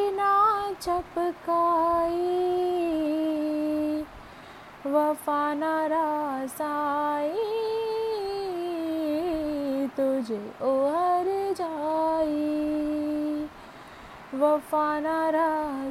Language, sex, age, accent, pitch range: Hindi, female, 20-39, native, 210-315 Hz